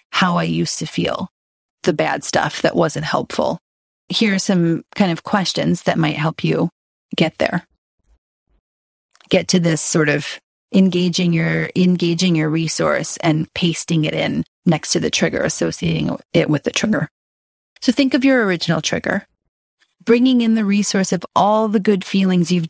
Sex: female